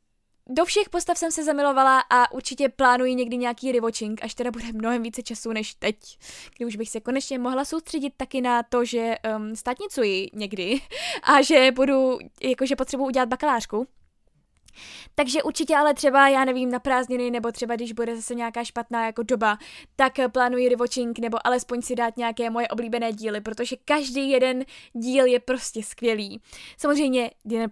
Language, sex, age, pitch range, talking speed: Czech, female, 10-29, 230-275 Hz, 165 wpm